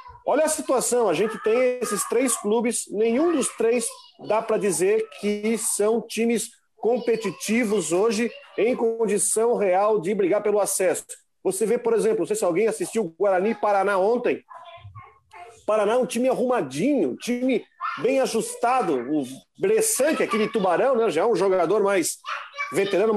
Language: Portuguese